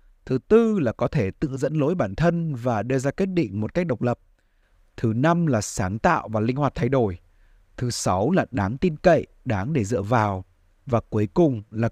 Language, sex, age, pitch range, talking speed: Vietnamese, male, 20-39, 105-160 Hz, 215 wpm